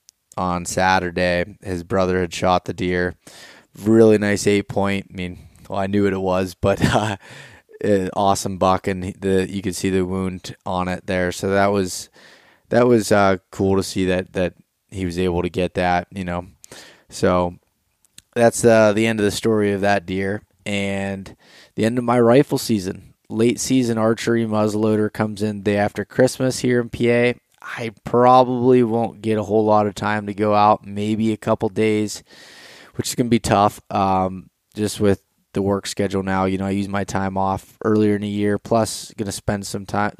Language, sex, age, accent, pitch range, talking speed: English, male, 20-39, American, 95-110 Hz, 190 wpm